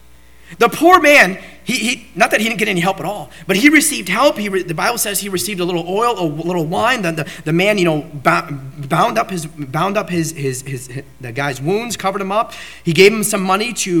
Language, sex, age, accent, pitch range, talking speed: English, male, 30-49, American, 155-225 Hz, 250 wpm